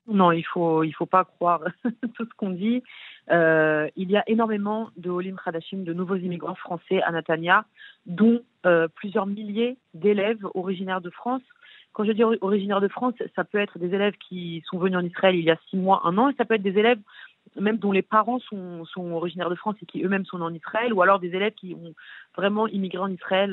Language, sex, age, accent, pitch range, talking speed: French, female, 30-49, French, 170-215 Hz, 225 wpm